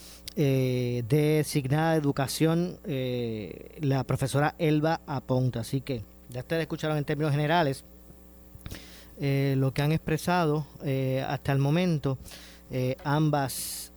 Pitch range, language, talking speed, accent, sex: 130-170 Hz, Spanish, 120 wpm, American, male